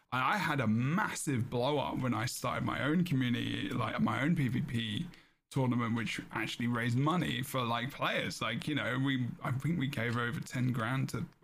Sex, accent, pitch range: male, British, 115-140 Hz